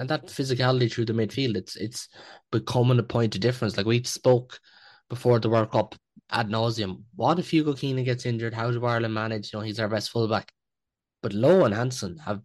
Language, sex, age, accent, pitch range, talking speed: English, male, 20-39, Irish, 105-120 Hz, 205 wpm